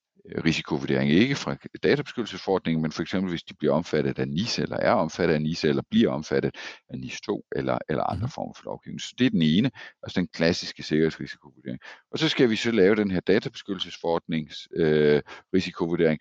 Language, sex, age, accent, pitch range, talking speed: Danish, male, 50-69, native, 75-85 Hz, 180 wpm